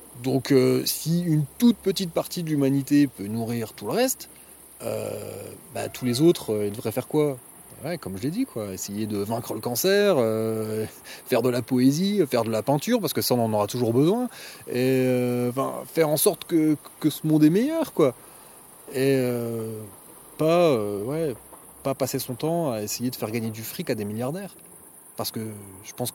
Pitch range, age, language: 120-170 Hz, 30-49, French